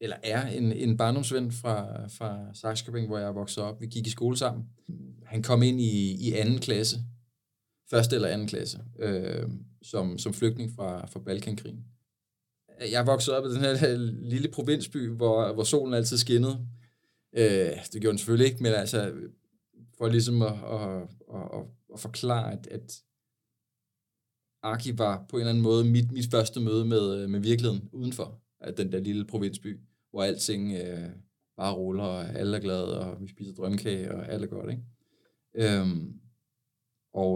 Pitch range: 105-125 Hz